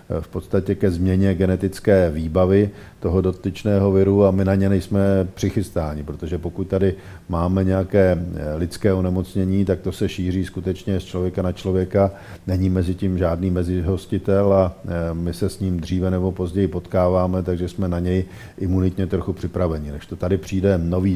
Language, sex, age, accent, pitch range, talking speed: Czech, male, 50-69, native, 90-95 Hz, 160 wpm